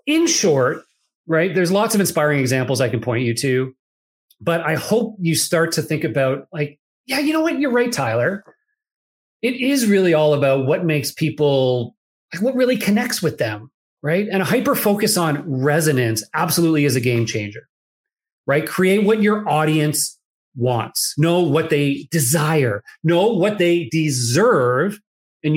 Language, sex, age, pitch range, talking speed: English, male, 40-59, 135-190 Hz, 160 wpm